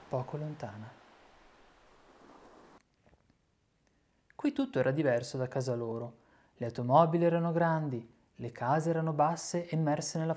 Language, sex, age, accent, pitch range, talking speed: Italian, male, 30-49, native, 120-160 Hz, 110 wpm